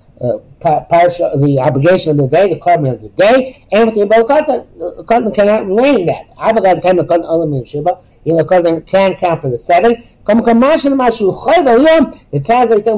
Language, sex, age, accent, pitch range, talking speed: English, male, 60-79, American, 150-220 Hz, 160 wpm